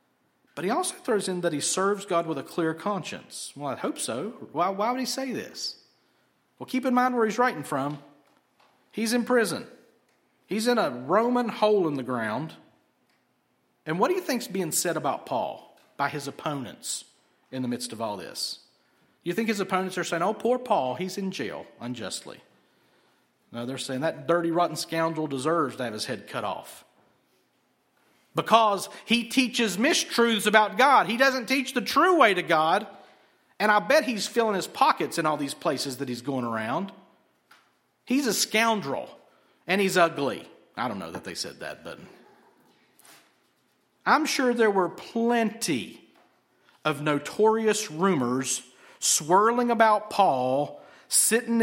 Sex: male